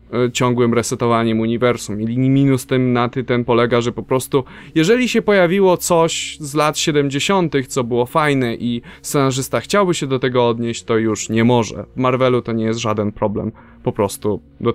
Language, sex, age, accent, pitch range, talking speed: Polish, male, 20-39, native, 115-145 Hz, 180 wpm